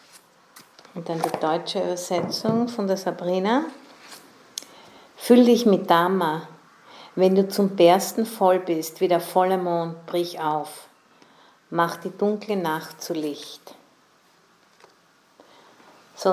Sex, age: female, 50-69